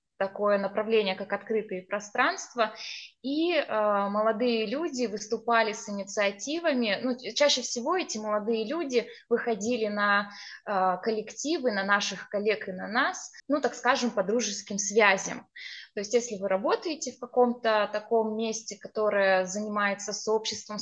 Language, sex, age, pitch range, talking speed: Russian, female, 20-39, 205-250 Hz, 135 wpm